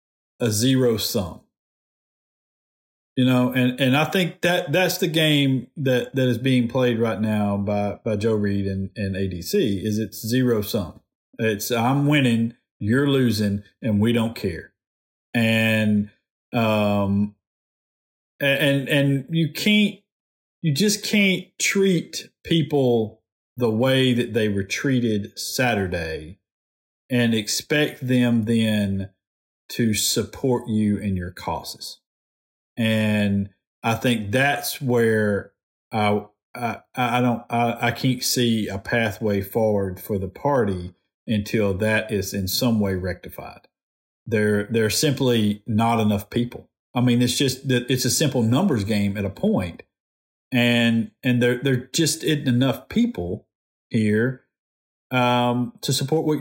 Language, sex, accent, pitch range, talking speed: English, male, American, 105-130 Hz, 135 wpm